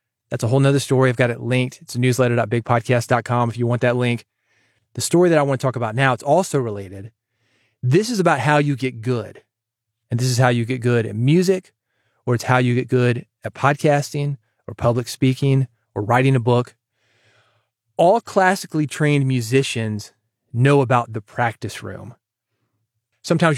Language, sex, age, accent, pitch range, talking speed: English, male, 30-49, American, 115-135 Hz, 175 wpm